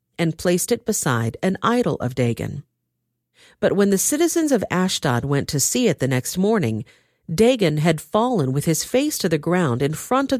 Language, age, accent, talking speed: English, 50-69, American, 190 wpm